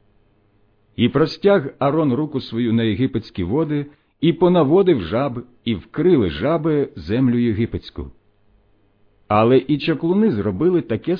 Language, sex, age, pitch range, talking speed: Ukrainian, male, 50-69, 100-145 Hz, 115 wpm